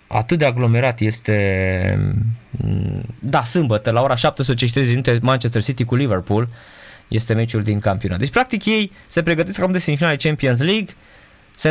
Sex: male